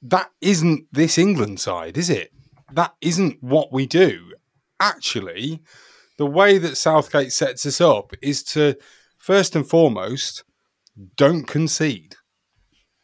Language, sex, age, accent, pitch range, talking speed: English, male, 30-49, British, 105-150 Hz, 125 wpm